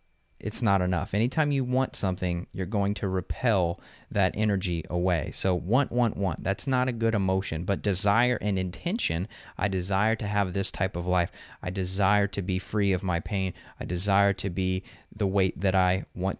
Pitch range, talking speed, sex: 95-110 Hz, 190 wpm, male